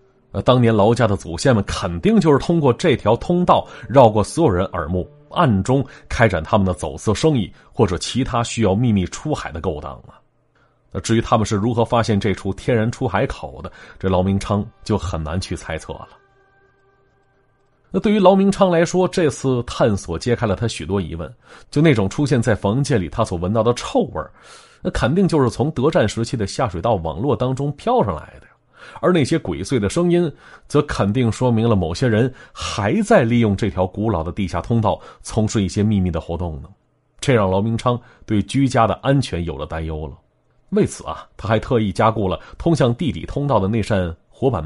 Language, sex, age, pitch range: Chinese, male, 30-49, 95-130 Hz